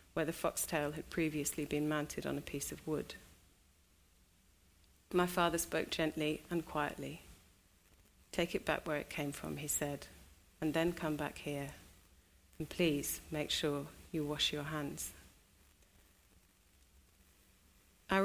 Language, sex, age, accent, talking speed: English, female, 30-49, British, 135 wpm